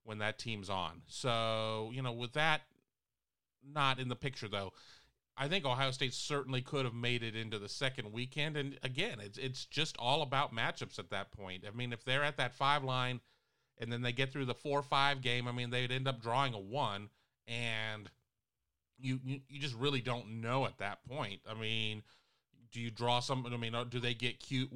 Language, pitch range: English, 115-135 Hz